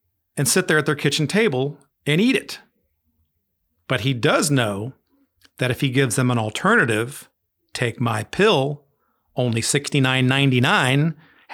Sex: male